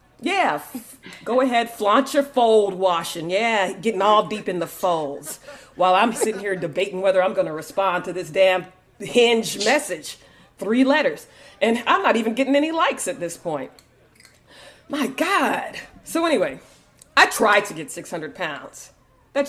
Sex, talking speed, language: female, 165 wpm, English